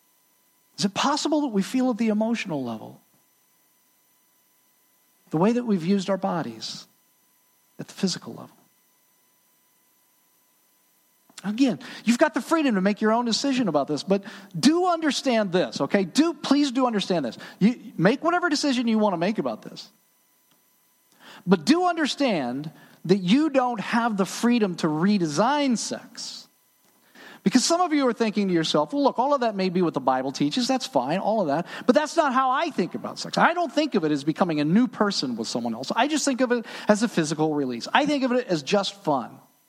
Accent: American